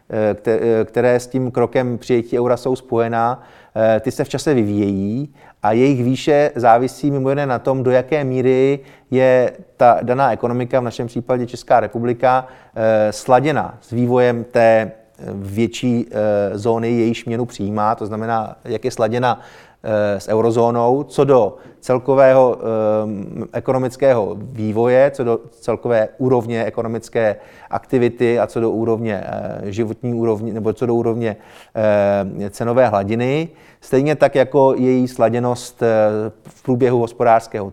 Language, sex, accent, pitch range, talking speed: Czech, male, native, 115-130 Hz, 125 wpm